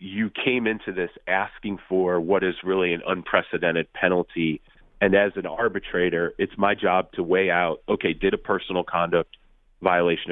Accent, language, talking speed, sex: American, English, 165 wpm, male